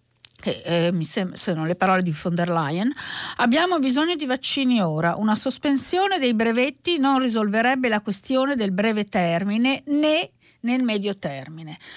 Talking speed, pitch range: 155 wpm, 200-270 Hz